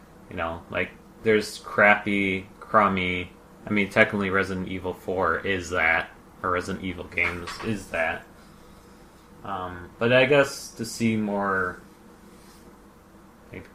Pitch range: 95-105 Hz